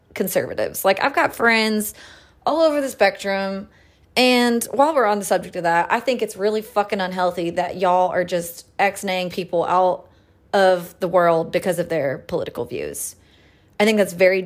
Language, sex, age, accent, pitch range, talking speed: English, female, 20-39, American, 175-220 Hz, 175 wpm